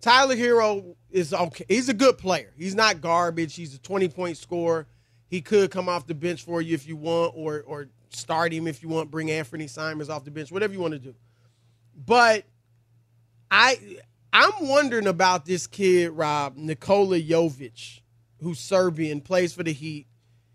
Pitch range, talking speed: 150-195 Hz, 175 wpm